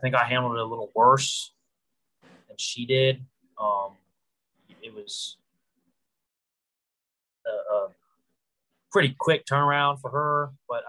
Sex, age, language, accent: male, 30-49, English, American